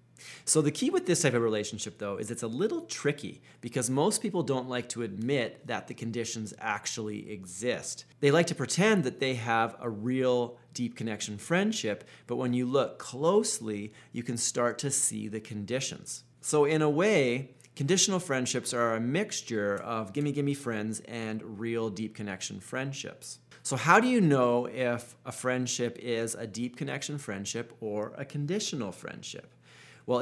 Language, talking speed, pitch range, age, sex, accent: English, 170 wpm, 115-140 Hz, 30-49, male, American